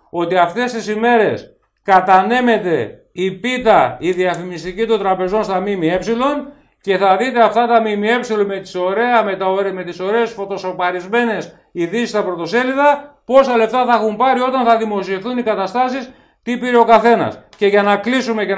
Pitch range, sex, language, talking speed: 180-235 Hz, male, Greek, 155 wpm